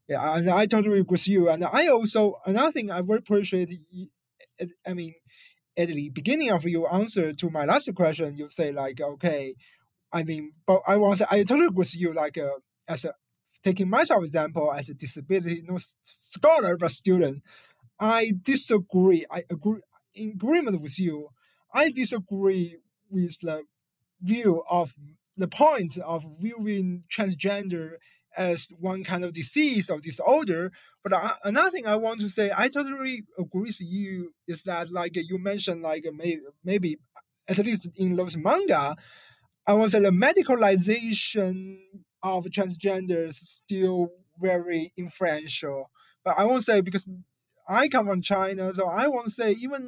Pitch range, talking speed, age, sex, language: 165-205 Hz, 160 wpm, 20-39, male, English